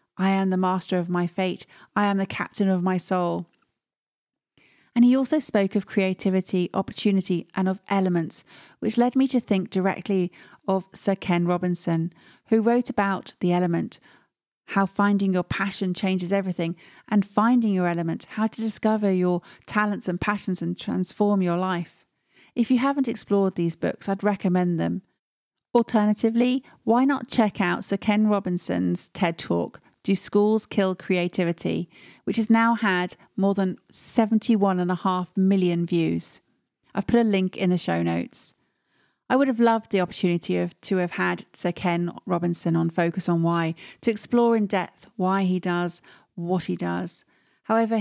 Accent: British